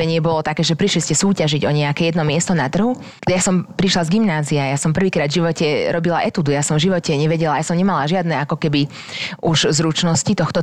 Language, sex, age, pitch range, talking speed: Slovak, female, 30-49, 160-190 Hz, 220 wpm